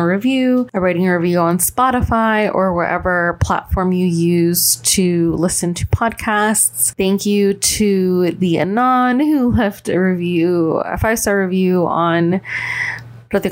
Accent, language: American, English